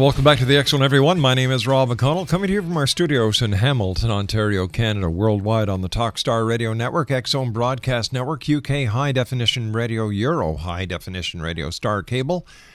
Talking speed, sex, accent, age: 190 wpm, male, American, 50-69